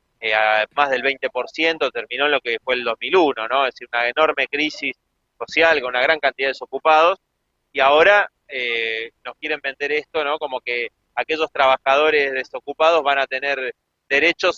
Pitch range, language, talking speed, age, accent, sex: 125-160 Hz, Spanish, 175 wpm, 30-49, Argentinian, male